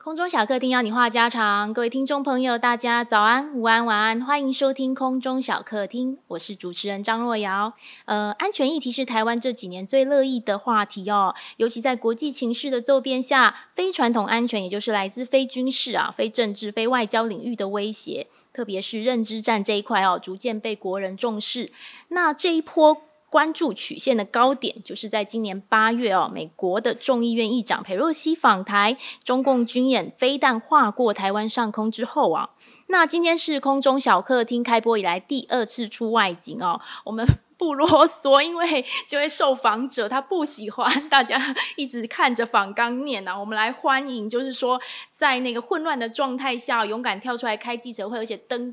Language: Chinese